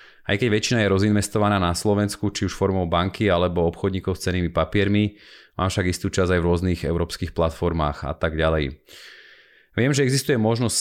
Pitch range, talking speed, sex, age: 85-105 Hz, 180 wpm, male, 30-49